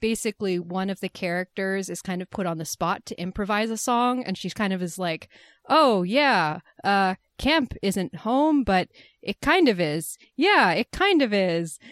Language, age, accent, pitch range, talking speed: English, 20-39, American, 175-225 Hz, 190 wpm